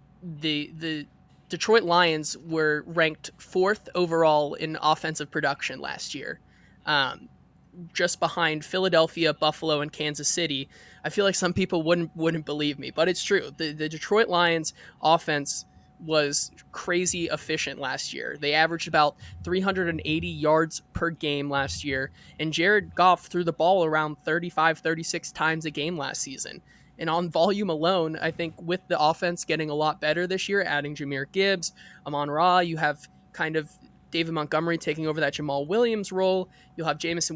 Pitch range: 150-175 Hz